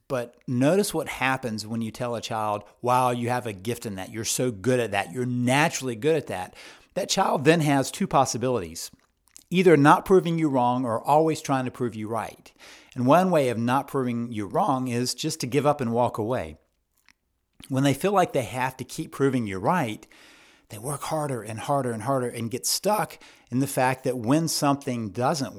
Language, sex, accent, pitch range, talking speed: English, male, American, 120-140 Hz, 205 wpm